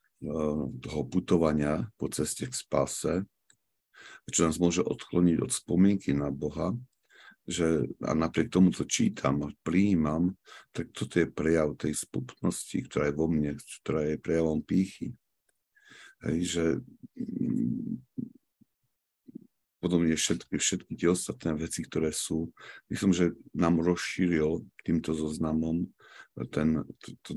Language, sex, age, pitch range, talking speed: Slovak, male, 50-69, 75-90 Hz, 115 wpm